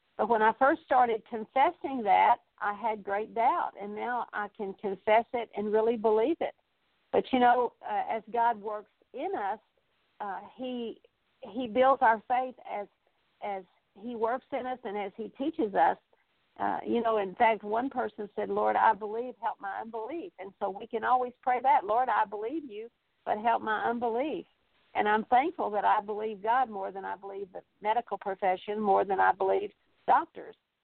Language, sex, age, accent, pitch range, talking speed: English, female, 50-69, American, 210-255 Hz, 185 wpm